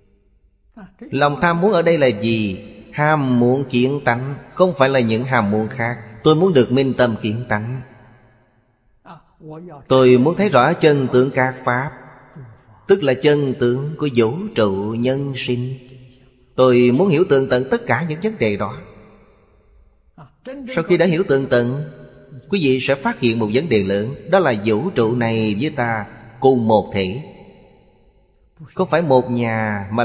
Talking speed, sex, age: 165 wpm, male, 30-49